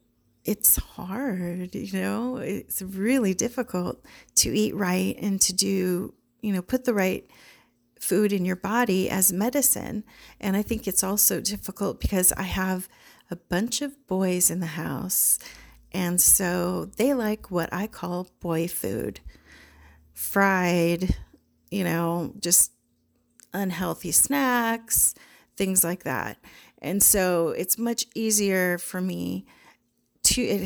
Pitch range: 170-205 Hz